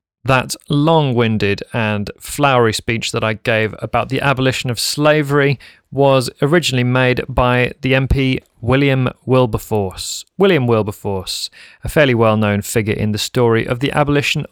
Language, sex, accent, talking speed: English, male, British, 135 wpm